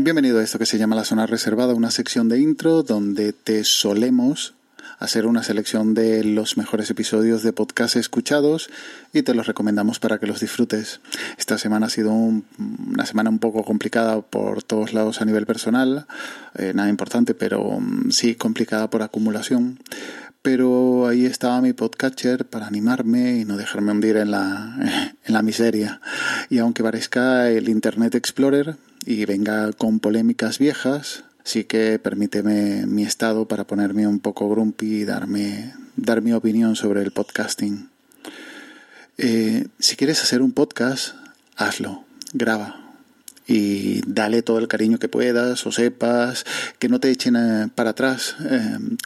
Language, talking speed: Spanish, 155 wpm